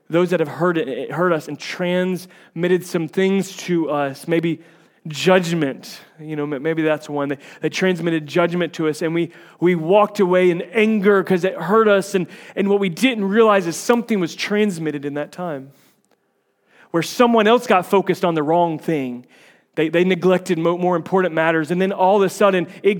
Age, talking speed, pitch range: 30-49, 190 wpm, 150-185 Hz